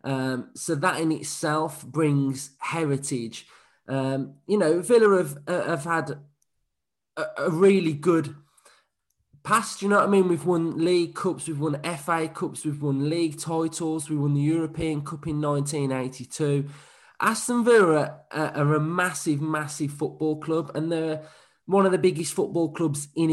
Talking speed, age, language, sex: 160 wpm, 20-39, English, male